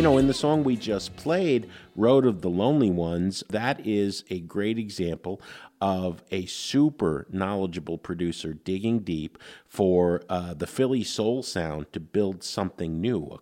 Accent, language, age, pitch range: American, English, 50-69, 85-115 Hz